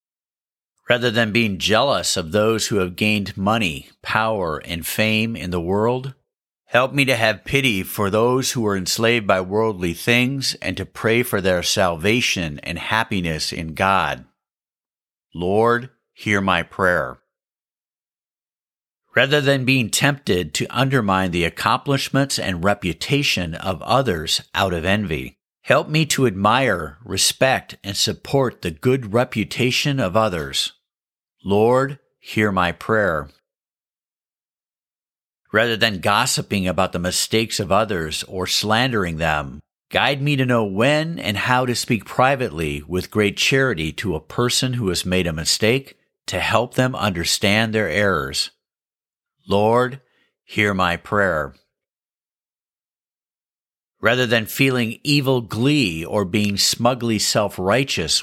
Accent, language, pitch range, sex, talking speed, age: American, English, 95-125 Hz, male, 130 wpm, 50-69